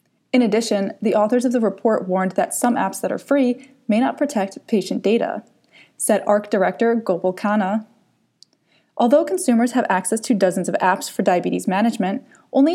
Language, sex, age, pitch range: English, female, 20-39, 195-250 Hz